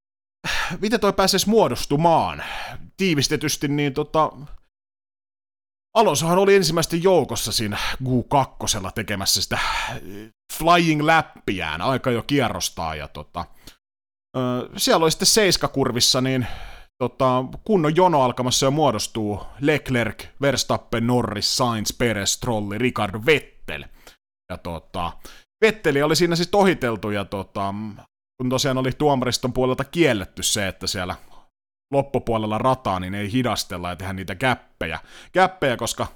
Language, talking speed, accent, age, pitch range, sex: Finnish, 115 wpm, native, 30-49, 100-145 Hz, male